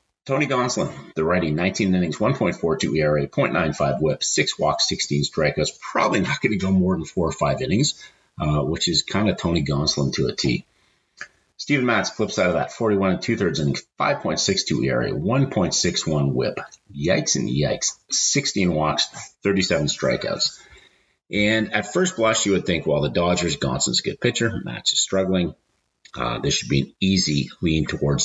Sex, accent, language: male, American, English